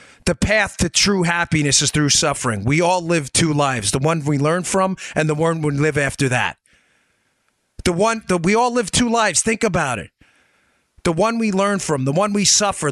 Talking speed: 210 wpm